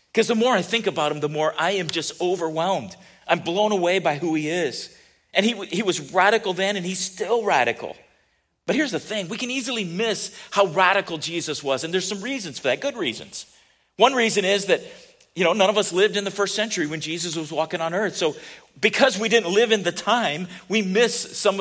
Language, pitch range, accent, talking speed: English, 160-210 Hz, American, 225 wpm